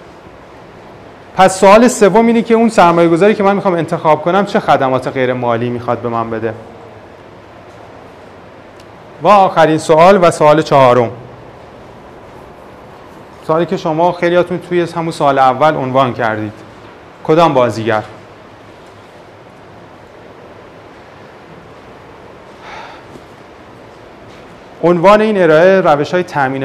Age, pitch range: 30-49, 125-165 Hz